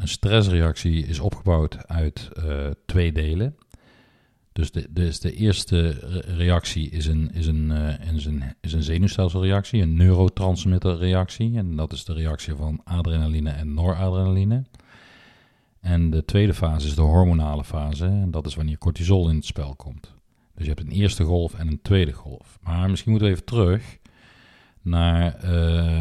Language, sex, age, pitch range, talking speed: Dutch, male, 40-59, 80-95 Hz, 160 wpm